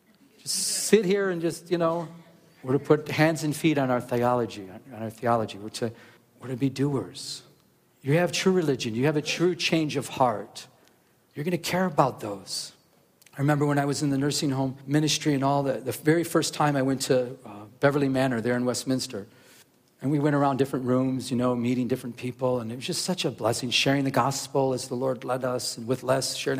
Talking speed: 220 wpm